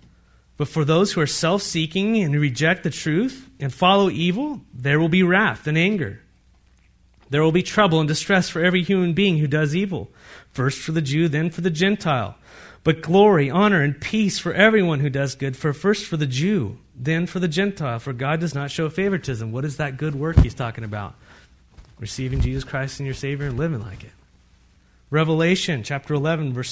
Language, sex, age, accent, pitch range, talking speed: English, male, 30-49, American, 140-195 Hz, 195 wpm